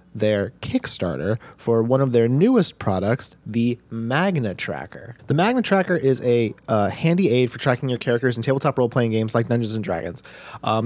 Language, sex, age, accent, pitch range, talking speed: English, male, 30-49, American, 115-160 Hz, 175 wpm